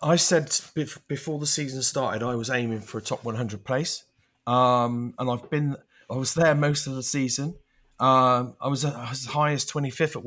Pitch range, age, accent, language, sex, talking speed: 120-145 Hz, 30-49, British, English, male, 195 wpm